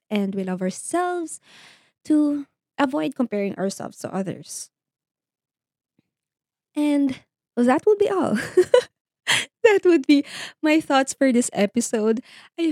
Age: 20-39